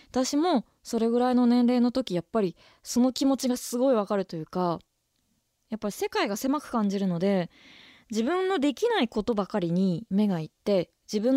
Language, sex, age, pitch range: Japanese, female, 20-39, 190-275 Hz